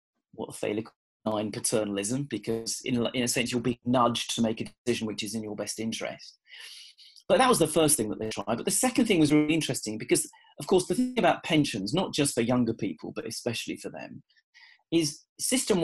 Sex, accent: male, British